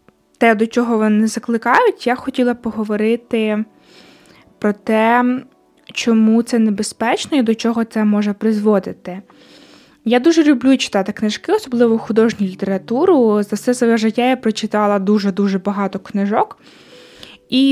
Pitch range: 215-250 Hz